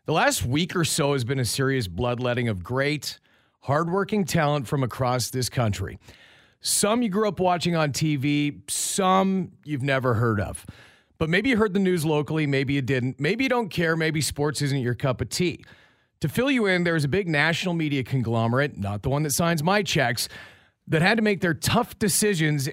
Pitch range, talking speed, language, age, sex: 130-175 Hz, 200 wpm, English, 40-59, male